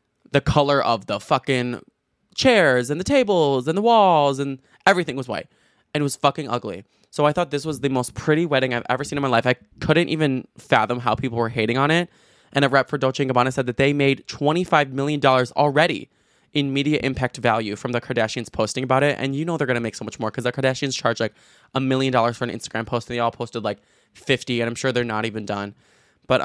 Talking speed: 240 wpm